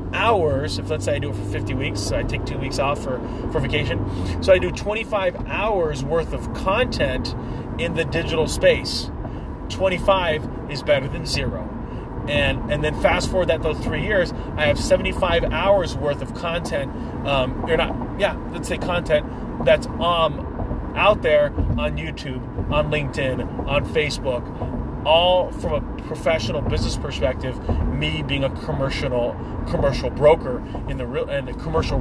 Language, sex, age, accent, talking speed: English, male, 30-49, American, 160 wpm